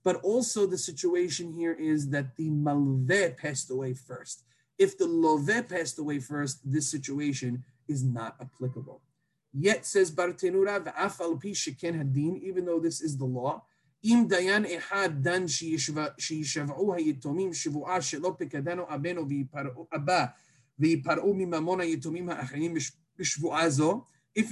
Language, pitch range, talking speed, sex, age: English, 150-190 Hz, 80 wpm, male, 30-49